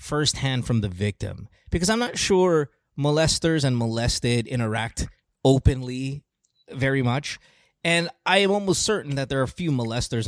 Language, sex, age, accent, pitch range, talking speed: English, male, 20-39, American, 105-140 Hz, 150 wpm